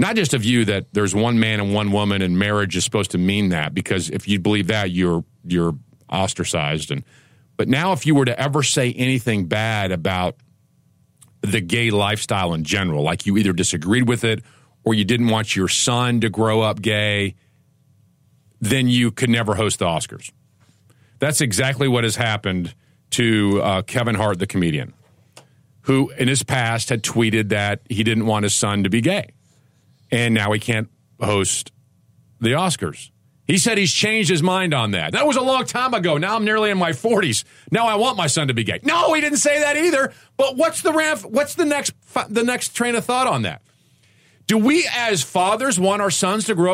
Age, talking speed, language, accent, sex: 50-69, 200 wpm, English, American, male